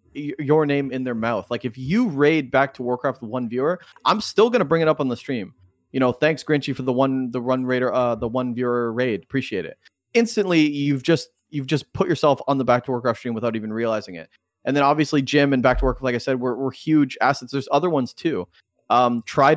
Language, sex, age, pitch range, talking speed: English, male, 30-49, 120-145 Hz, 240 wpm